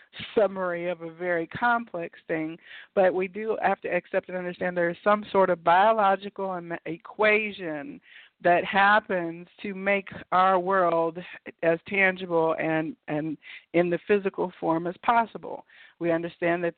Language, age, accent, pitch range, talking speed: English, 50-69, American, 175-210 Hz, 145 wpm